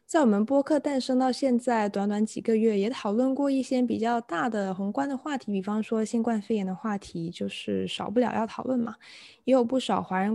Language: Chinese